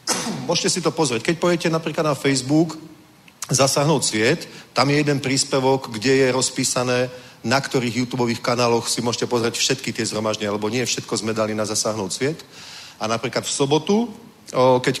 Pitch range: 115-135 Hz